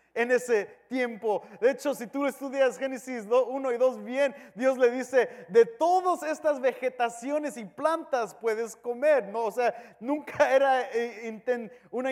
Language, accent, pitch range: English, Mexican, 215-275 Hz